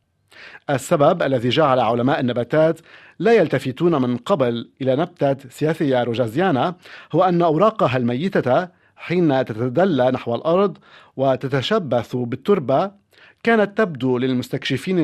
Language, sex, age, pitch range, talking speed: Arabic, male, 50-69, 125-170 Hz, 105 wpm